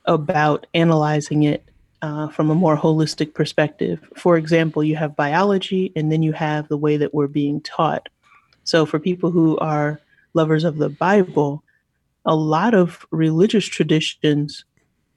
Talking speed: 150 wpm